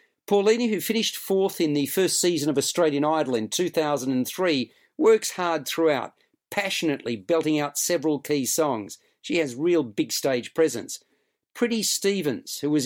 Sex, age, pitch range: male, 50-69, 150-195 Hz